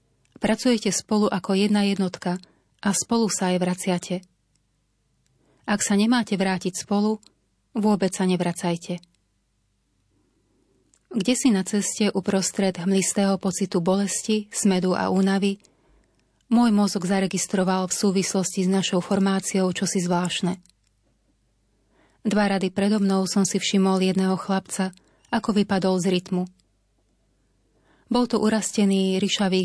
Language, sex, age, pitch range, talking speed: Slovak, female, 30-49, 180-205 Hz, 115 wpm